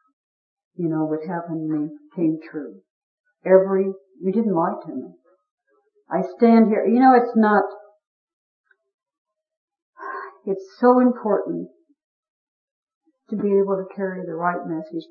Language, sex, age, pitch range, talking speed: English, female, 60-79, 170-280 Hz, 125 wpm